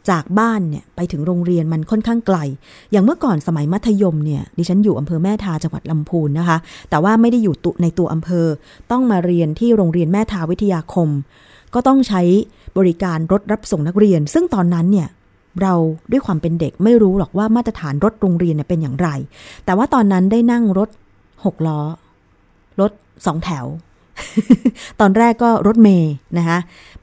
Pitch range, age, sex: 165-210 Hz, 20-39, female